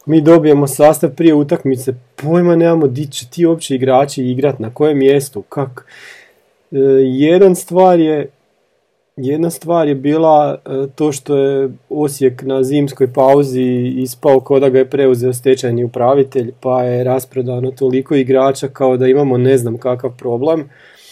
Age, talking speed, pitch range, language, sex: 40-59, 145 wpm, 130-150 Hz, Croatian, male